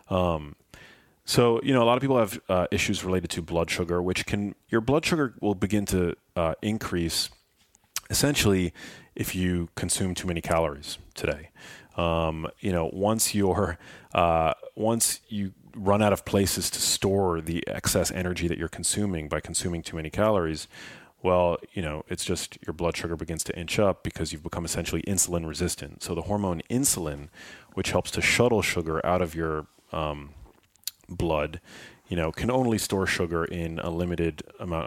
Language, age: English, 30-49